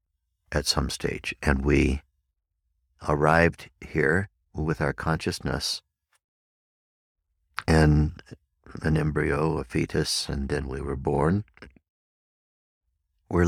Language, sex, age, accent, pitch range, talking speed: English, male, 60-79, American, 70-80 Hz, 95 wpm